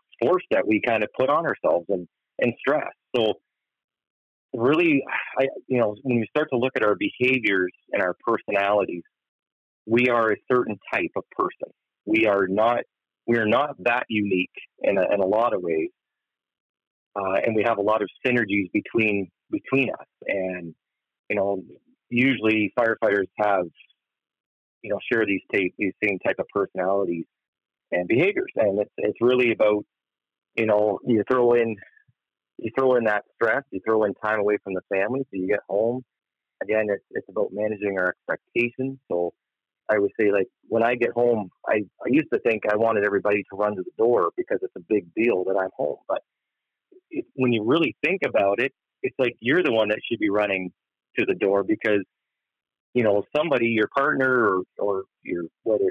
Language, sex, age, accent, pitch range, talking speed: English, male, 40-59, American, 100-130 Hz, 185 wpm